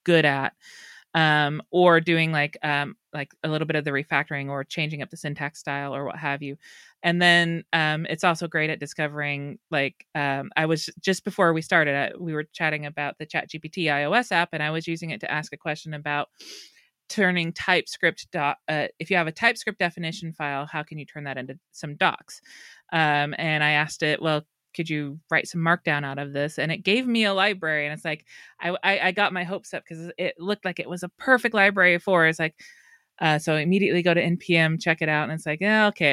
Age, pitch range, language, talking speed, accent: 30-49, 150-180 Hz, English, 225 wpm, American